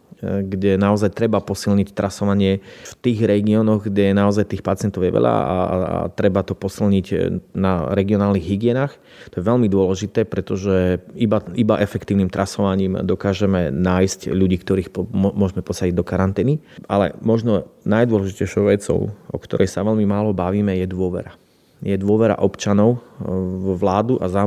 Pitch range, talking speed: 95-105 Hz, 140 wpm